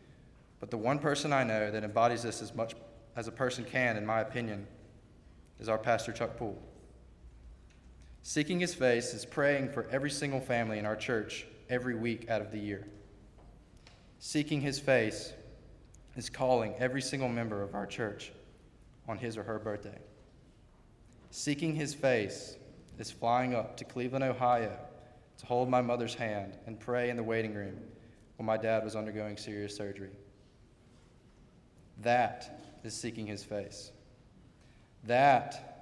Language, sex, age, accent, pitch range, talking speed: English, male, 20-39, American, 105-125 Hz, 150 wpm